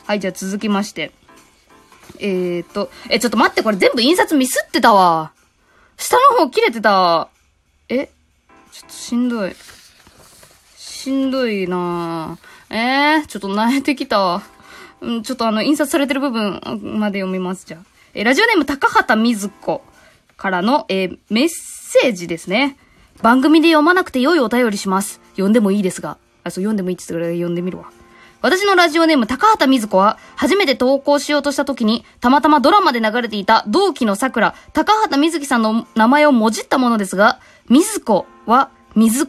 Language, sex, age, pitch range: Japanese, female, 20-39, 195-295 Hz